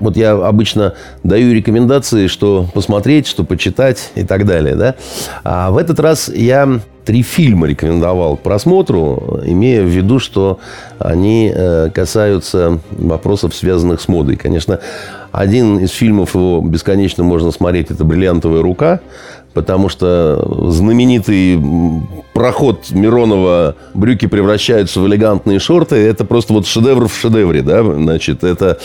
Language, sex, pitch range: Russian, male, 85-115 Hz